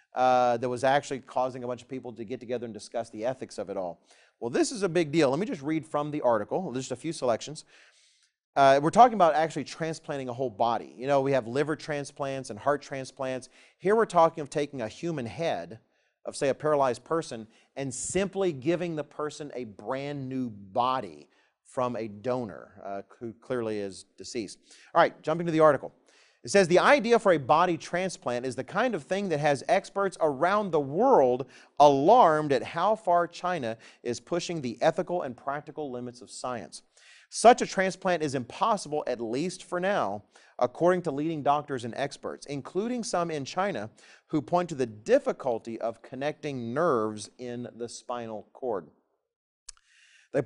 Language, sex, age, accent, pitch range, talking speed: English, male, 40-59, American, 125-170 Hz, 185 wpm